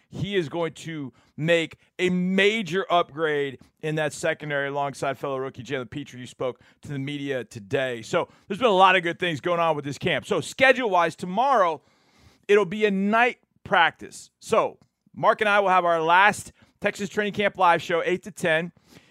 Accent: American